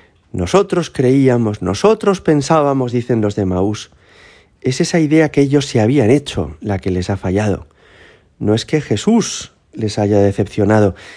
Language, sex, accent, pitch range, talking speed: Spanish, male, Spanish, 95-125 Hz, 150 wpm